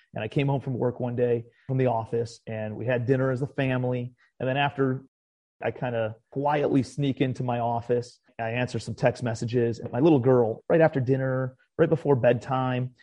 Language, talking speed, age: English, 200 wpm, 30-49